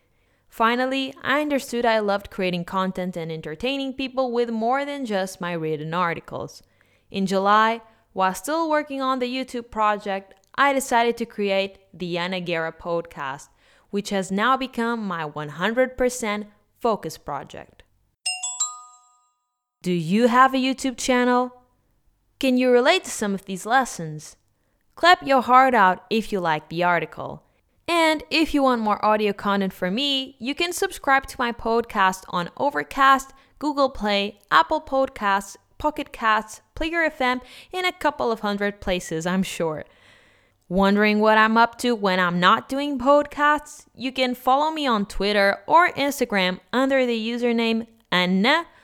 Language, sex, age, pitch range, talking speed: English, female, 20-39, 195-265 Hz, 145 wpm